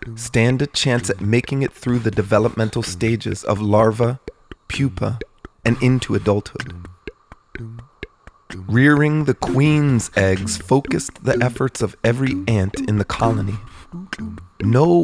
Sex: male